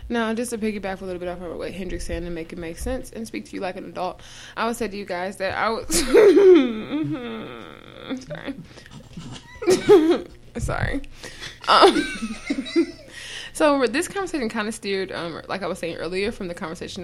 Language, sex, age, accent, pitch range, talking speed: English, female, 20-39, American, 185-265 Hz, 185 wpm